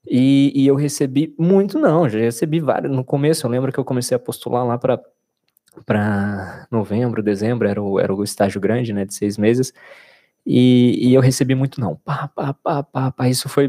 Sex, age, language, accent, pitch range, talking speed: male, 20-39, Portuguese, Brazilian, 110-145 Hz, 195 wpm